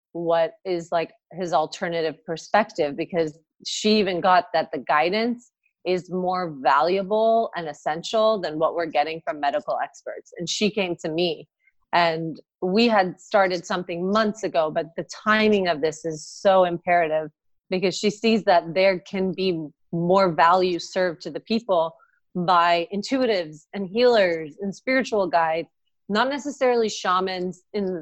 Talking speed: 150 wpm